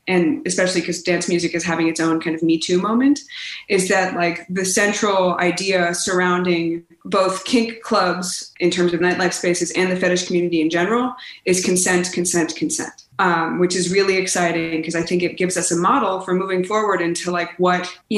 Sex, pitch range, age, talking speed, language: female, 170-200 Hz, 20-39, 195 wpm, English